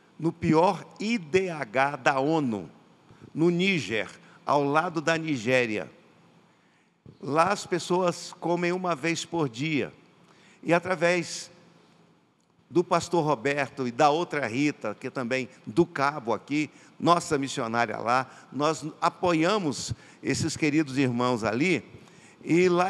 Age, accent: 50-69, Brazilian